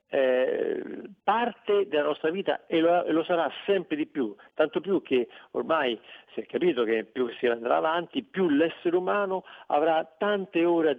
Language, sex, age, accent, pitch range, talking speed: Italian, male, 50-69, native, 130-190 Hz, 170 wpm